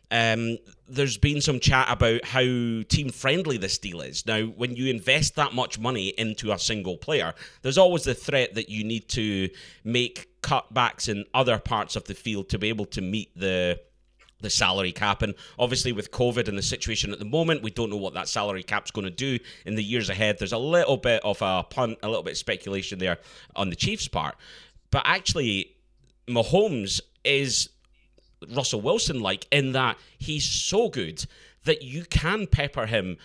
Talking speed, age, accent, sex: 190 wpm, 30-49, British, male